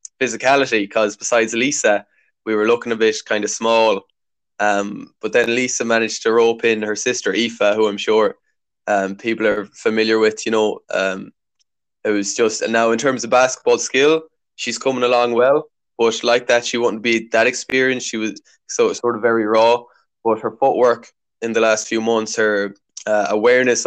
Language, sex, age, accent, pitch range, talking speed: English, male, 20-39, Irish, 110-125 Hz, 185 wpm